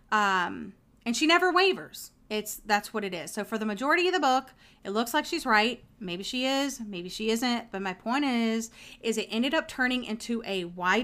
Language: English